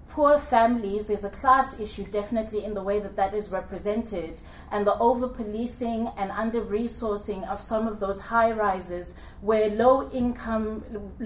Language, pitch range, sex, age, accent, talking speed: English, 195-220 Hz, female, 30-49, South African, 145 wpm